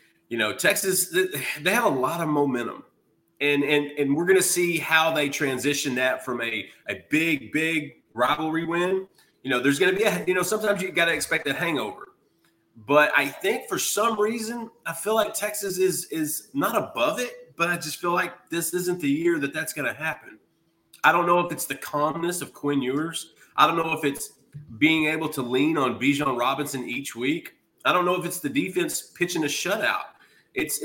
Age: 30-49